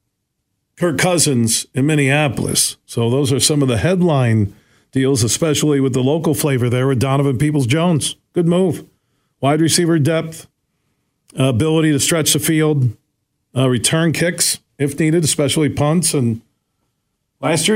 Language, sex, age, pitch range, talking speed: English, male, 50-69, 130-160 Hz, 140 wpm